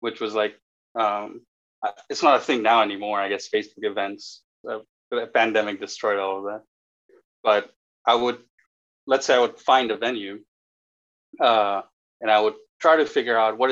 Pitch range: 105-145 Hz